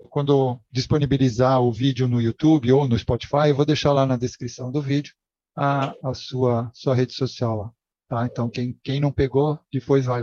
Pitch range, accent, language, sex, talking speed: 120-155 Hz, Brazilian, Portuguese, male, 190 wpm